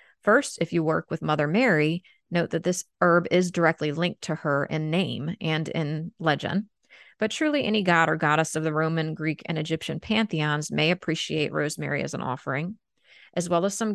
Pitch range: 155-210 Hz